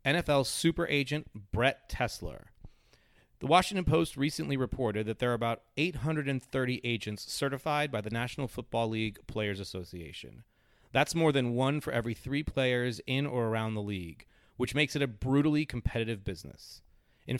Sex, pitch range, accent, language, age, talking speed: male, 110-140 Hz, American, English, 30-49, 155 wpm